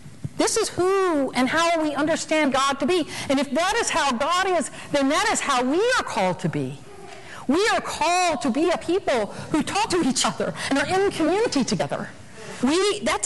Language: English